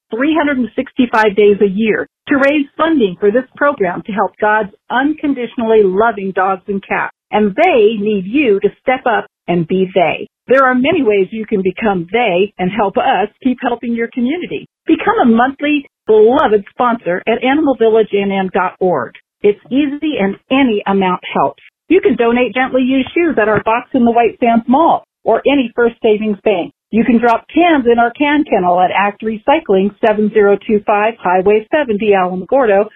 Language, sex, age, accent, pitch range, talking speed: English, female, 50-69, American, 205-270 Hz, 165 wpm